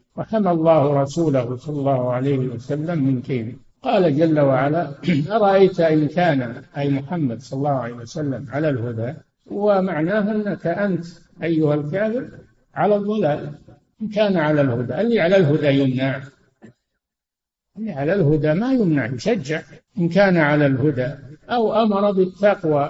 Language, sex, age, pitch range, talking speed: Arabic, male, 60-79, 140-185 Hz, 135 wpm